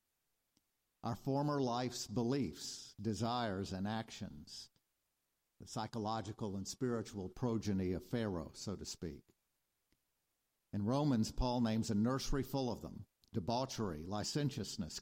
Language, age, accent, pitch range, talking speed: English, 50-69, American, 100-120 Hz, 110 wpm